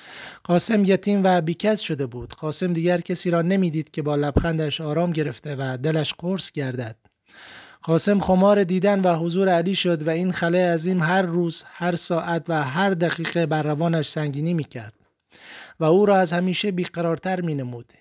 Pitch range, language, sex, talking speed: 160-185 Hz, Persian, male, 165 wpm